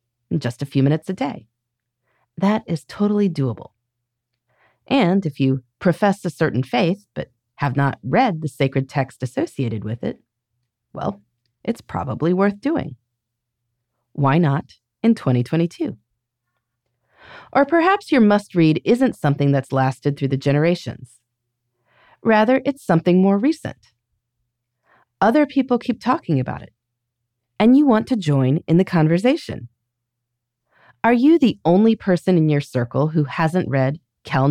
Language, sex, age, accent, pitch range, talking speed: English, female, 30-49, American, 120-190 Hz, 140 wpm